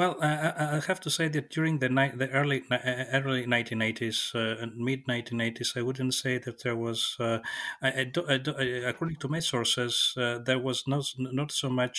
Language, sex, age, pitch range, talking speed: English, male, 30-49, 110-130 Hz, 195 wpm